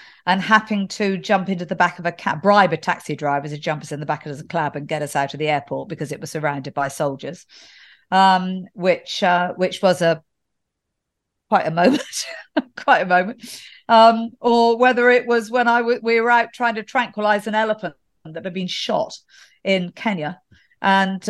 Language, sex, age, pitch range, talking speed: English, female, 50-69, 160-215 Hz, 200 wpm